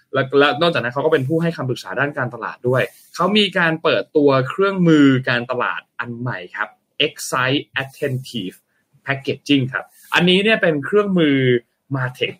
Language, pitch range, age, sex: Thai, 125-165 Hz, 20-39, male